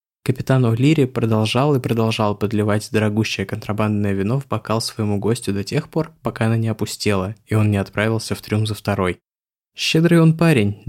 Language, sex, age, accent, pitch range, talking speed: Russian, male, 20-39, native, 105-125 Hz, 170 wpm